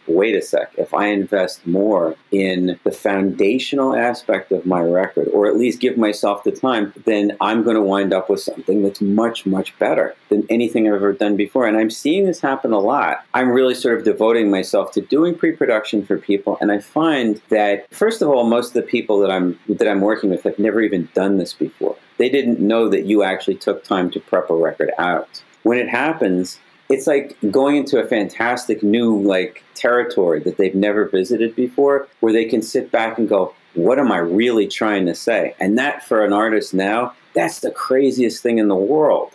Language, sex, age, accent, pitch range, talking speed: English, male, 40-59, American, 100-135 Hz, 205 wpm